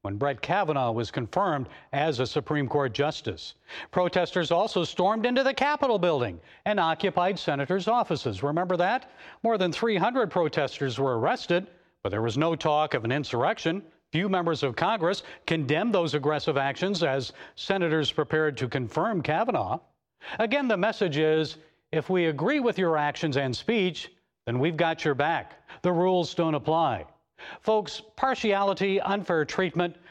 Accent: American